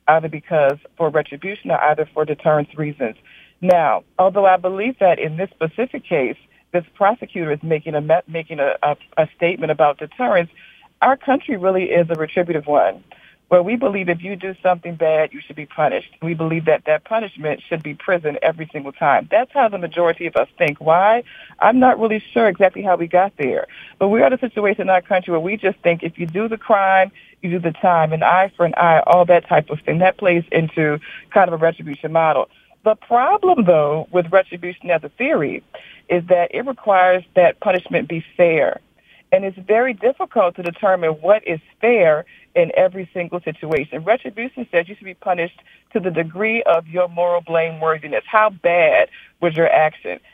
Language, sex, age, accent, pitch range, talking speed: English, female, 50-69, American, 160-205 Hz, 190 wpm